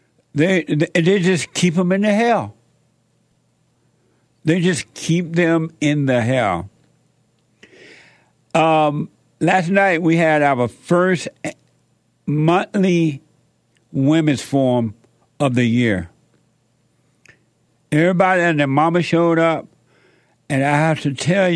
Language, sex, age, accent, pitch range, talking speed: English, male, 60-79, American, 125-165 Hz, 110 wpm